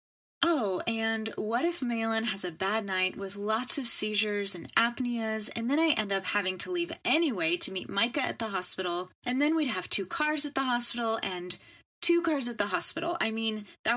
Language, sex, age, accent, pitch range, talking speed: English, female, 30-49, American, 200-285 Hz, 205 wpm